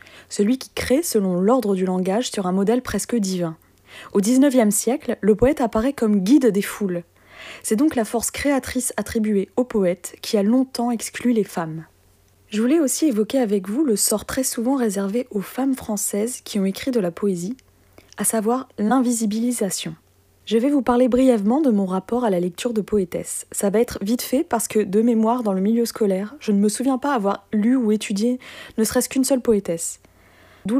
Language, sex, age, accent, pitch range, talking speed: French, female, 20-39, French, 195-245 Hz, 195 wpm